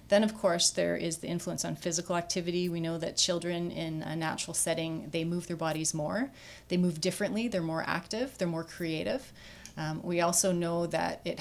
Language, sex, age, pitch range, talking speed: English, female, 30-49, 160-185 Hz, 200 wpm